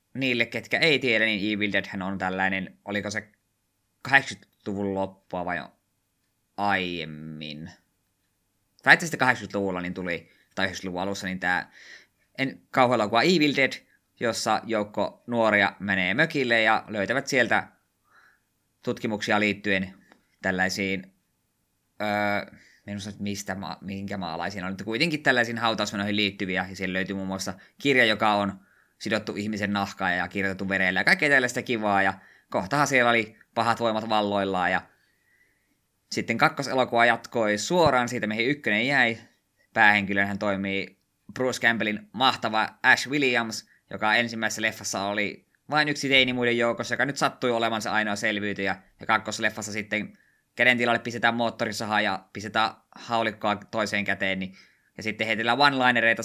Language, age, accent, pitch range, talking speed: Finnish, 20-39, native, 95-115 Hz, 130 wpm